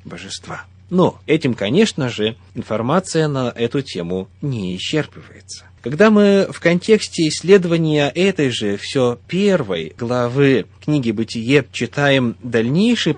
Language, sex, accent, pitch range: Russian, male, native, 100-165 Hz